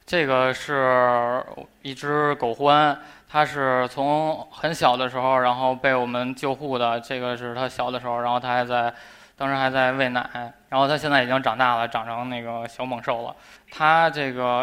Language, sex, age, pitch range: Chinese, male, 20-39, 125-140 Hz